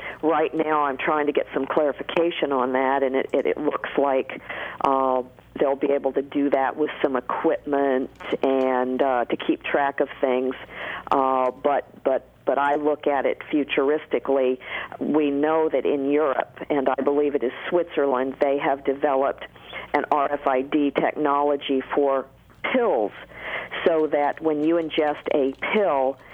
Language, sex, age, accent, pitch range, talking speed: English, female, 50-69, American, 135-150 Hz, 155 wpm